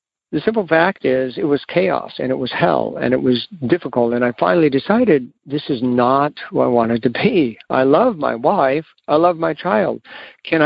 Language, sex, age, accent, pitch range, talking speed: English, male, 60-79, American, 130-170 Hz, 205 wpm